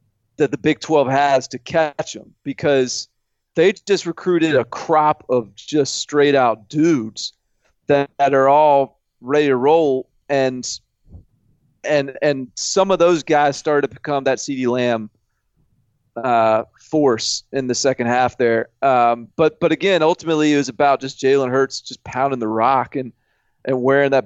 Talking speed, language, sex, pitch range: 160 wpm, English, male, 135-185 Hz